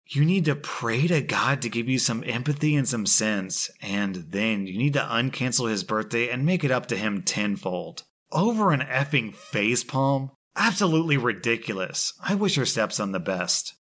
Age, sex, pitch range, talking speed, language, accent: 30-49, male, 105-140 Hz, 180 wpm, English, American